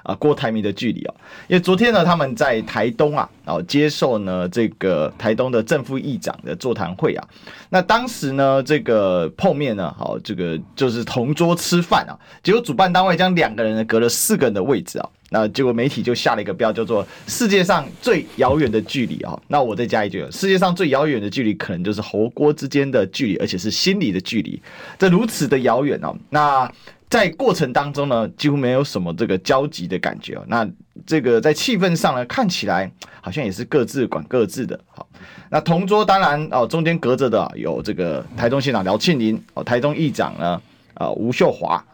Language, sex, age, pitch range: Chinese, male, 30-49, 115-170 Hz